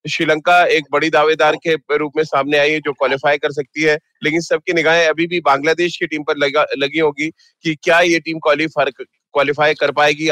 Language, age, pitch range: Hindi, 30-49, 155-180 Hz